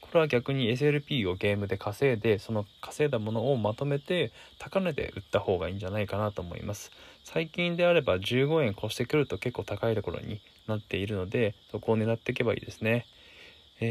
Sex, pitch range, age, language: male, 100-130 Hz, 20-39, Japanese